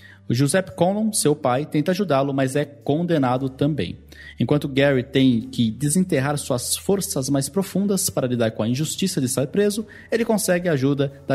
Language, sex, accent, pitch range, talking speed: Portuguese, male, Brazilian, 110-145 Hz, 175 wpm